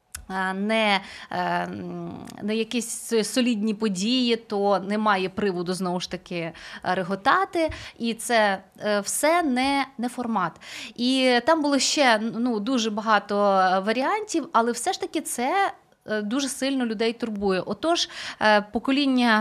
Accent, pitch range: native, 205-285 Hz